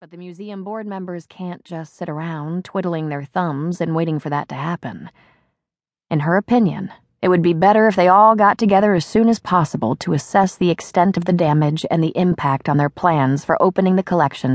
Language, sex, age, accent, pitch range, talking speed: English, female, 30-49, American, 150-190 Hz, 210 wpm